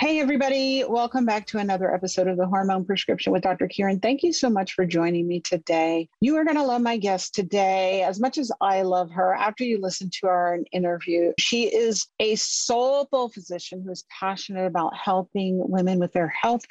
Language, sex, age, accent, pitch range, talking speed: English, female, 40-59, American, 180-230 Hz, 200 wpm